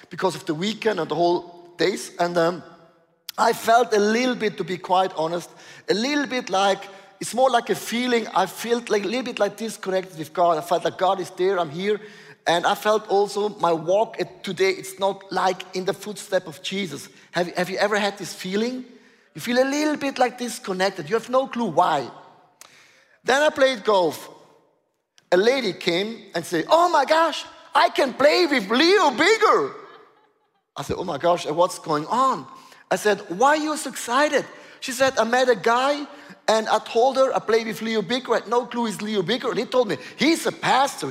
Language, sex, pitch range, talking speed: English, male, 185-275 Hz, 205 wpm